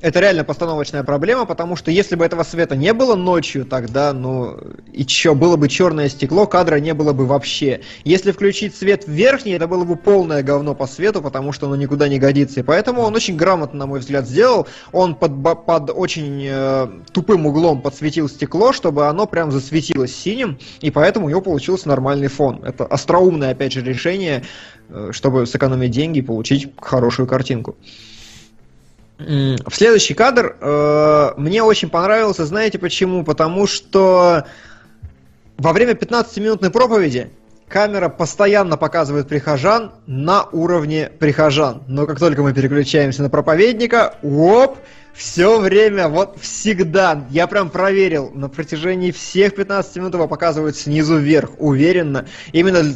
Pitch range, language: 140-180 Hz, Russian